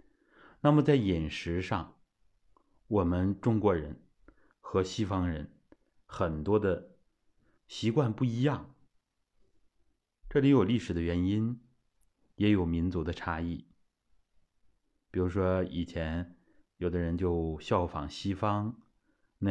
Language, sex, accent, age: Chinese, male, native, 30-49